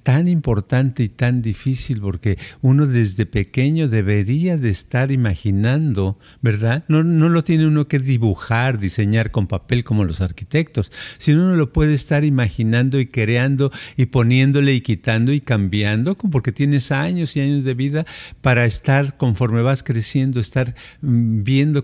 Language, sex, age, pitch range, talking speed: Spanish, male, 50-69, 110-140 Hz, 150 wpm